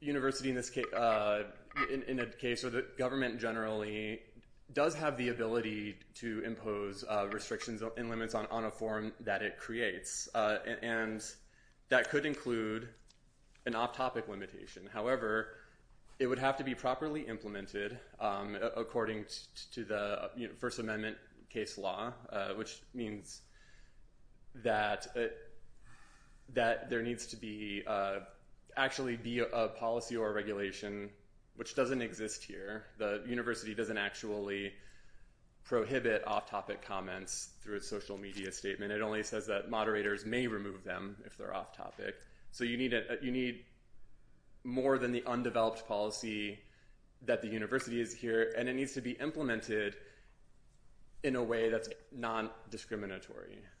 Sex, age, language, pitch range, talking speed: male, 20-39, English, 105-120 Hz, 145 wpm